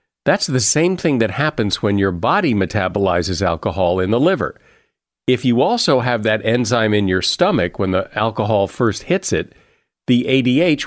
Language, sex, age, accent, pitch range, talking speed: English, male, 50-69, American, 100-130 Hz, 170 wpm